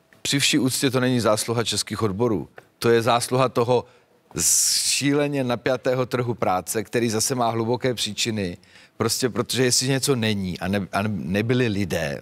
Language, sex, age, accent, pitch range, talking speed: Czech, male, 40-59, native, 105-130 Hz, 140 wpm